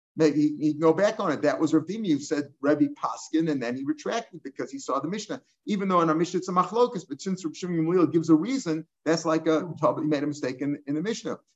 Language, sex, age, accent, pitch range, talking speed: English, male, 50-69, American, 155-195 Hz, 245 wpm